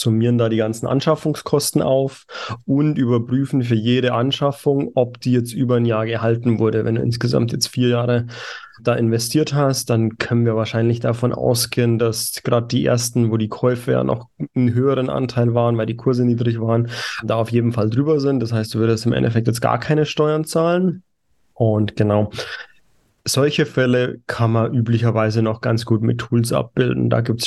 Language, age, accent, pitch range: German, 30-49, German, 115-125 Hz